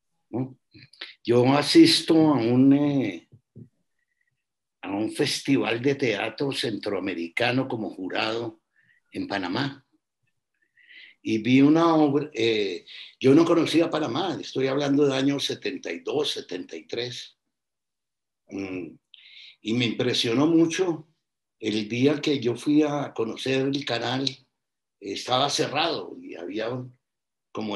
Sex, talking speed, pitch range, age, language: male, 110 wpm, 125-165 Hz, 60-79, Spanish